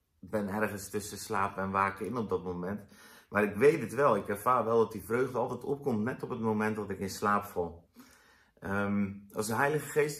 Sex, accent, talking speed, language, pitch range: male, Dutch, 225 wpm, Dutch, 100-120 Hz